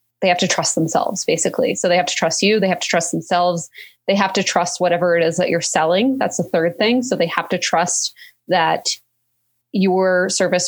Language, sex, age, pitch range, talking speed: English, female, 20-39, 160-185 Hz, 220 wpm